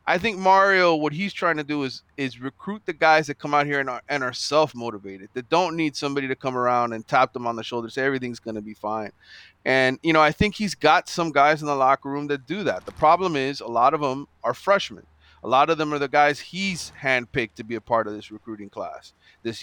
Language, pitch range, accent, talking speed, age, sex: English, 120-150 Hz, American, 255 wpm, 30-49, male